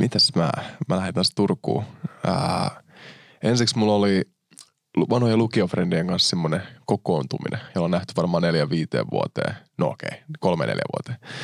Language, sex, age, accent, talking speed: Finnish, male, 20-39, native, 140 wpm